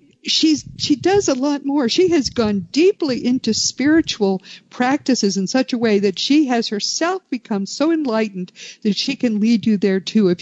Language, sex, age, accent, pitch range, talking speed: English, female, 50-69, American, 185-250 Hz, 180 wpm